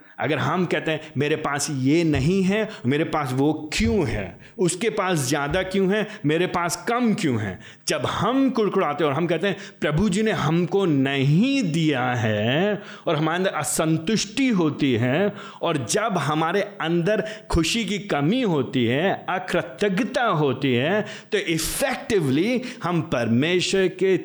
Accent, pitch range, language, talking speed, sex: native, 145-205 Hz, Hindi, 150 wpm, male